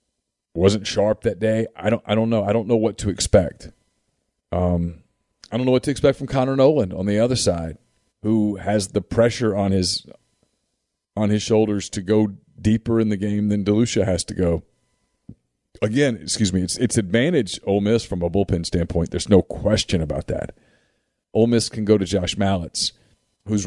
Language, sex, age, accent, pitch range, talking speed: English, male, 40-59, American, 95-115 Hz, 190 wpm